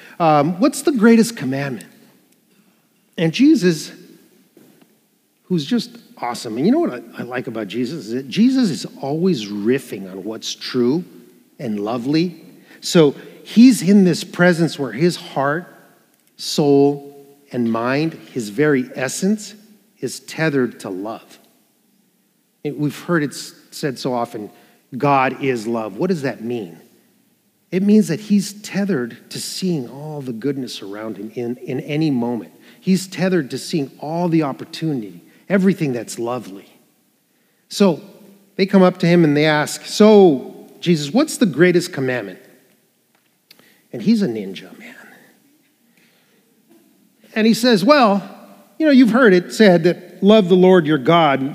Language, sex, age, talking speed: English, male, 40-59, 145 wpm